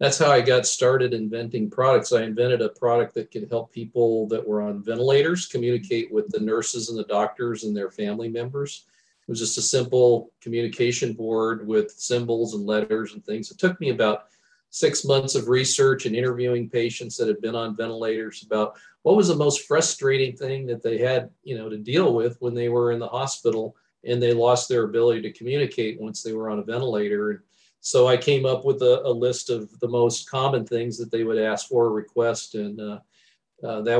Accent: American